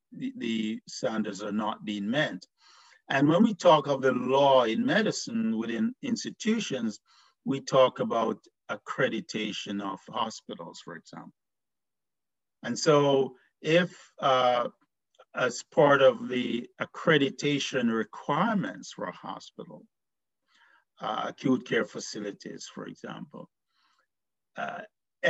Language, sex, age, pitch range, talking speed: English, male, 50-69, 120-165 Hz, 105 wpm